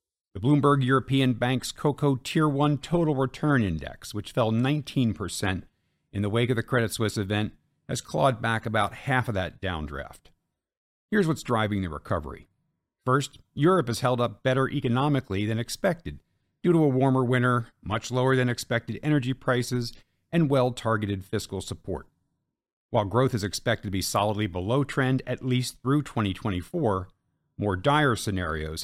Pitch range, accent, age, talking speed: 100-130 Hz, American, 50-69, 155 wpm